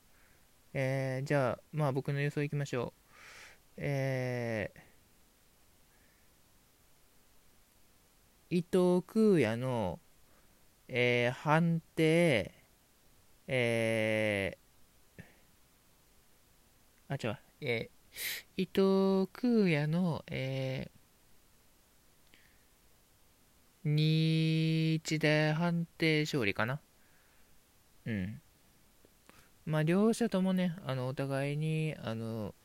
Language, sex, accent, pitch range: Japanese, male, native, 130-170 Hz